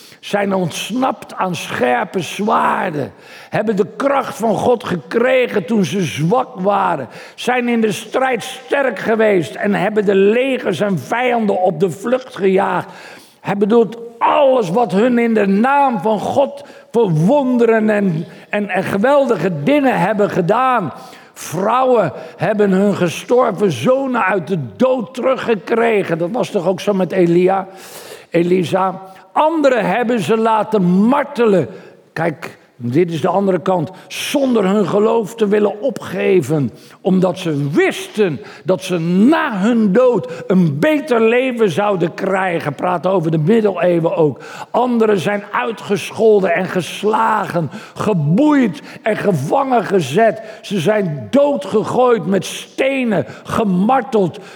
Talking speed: 130 wpm